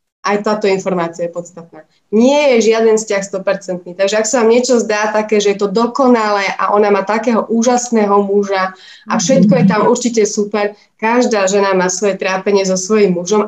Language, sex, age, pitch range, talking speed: Slovak, female, 20-39, 200-245 Hz, 185 wpm